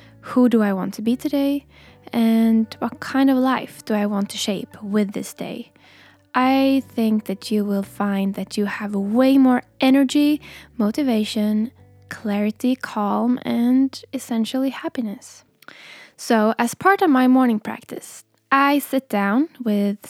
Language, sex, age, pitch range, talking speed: English, female, 10-29, 210-260 Hz, 145 wpm